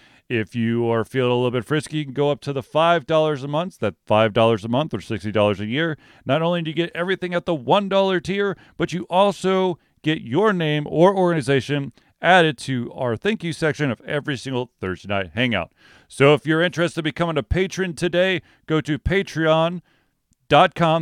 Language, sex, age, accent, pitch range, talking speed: English, male, 40-59, American, 110-155 Hz, 190 wpm